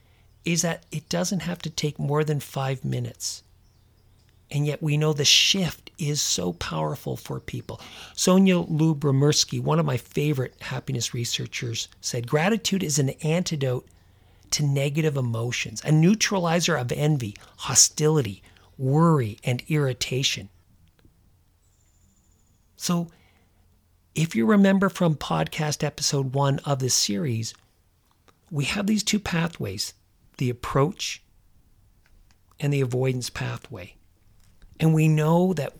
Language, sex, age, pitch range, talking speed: English, male, 40-59, 100-165 Hz, 120 wpm